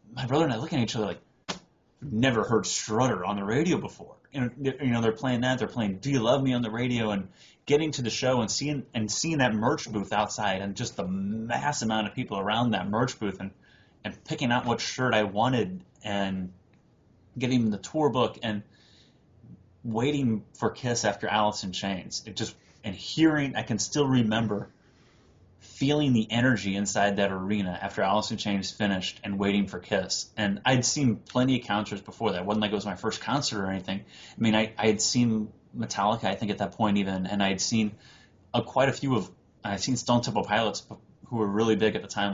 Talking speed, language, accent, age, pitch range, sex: 215 wpm, English, American, 30-49, 100-120 Hz, male